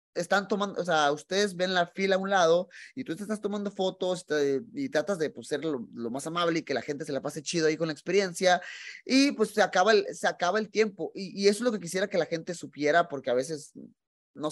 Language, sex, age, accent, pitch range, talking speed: Spanish, male, 20-39, Mexican, 155-210 Hz, 260 wpm